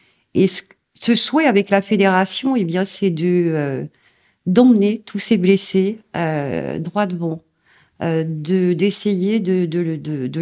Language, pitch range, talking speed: French, 170-200 Hz, 145 wpm